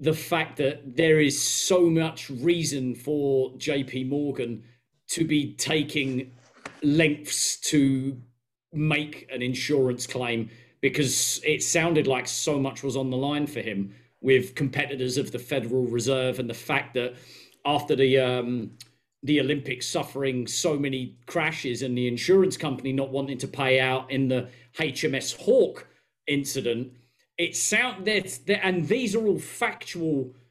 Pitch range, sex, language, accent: 130-165 Hz, male, English, British